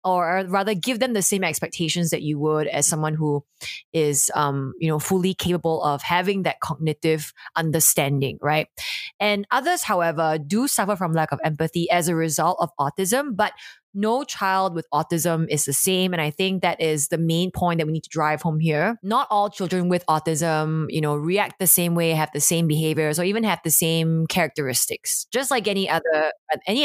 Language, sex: English, female